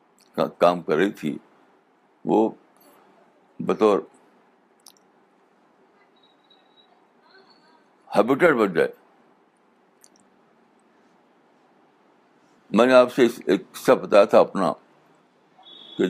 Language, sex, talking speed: Urdu, male, 70 wpm